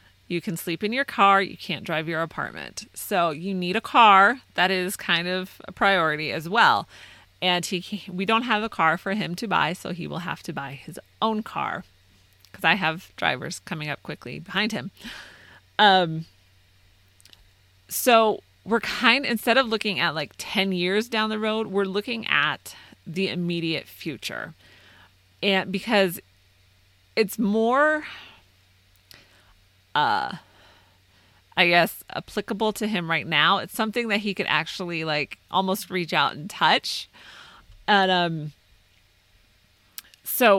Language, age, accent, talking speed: English, 30-49, American, 150 wpm